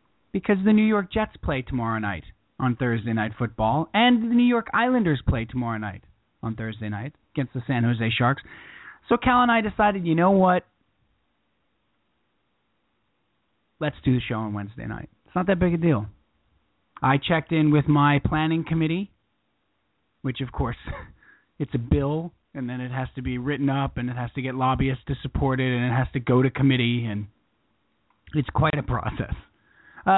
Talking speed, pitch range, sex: 185 wpm, 115-175 Hz, male